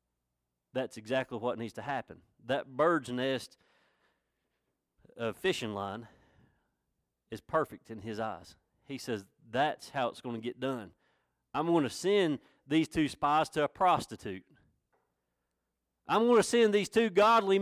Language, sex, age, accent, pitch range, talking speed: English, male, 40-59, American, 95-155 Hz, 145 wpm